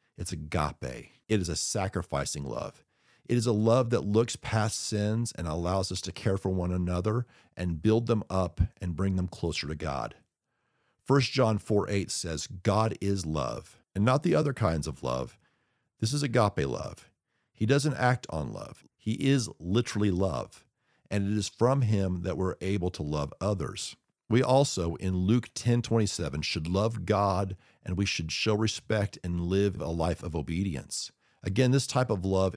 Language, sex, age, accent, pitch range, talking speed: English, male, 50-69, American, 90-115 Hz, 175 wpm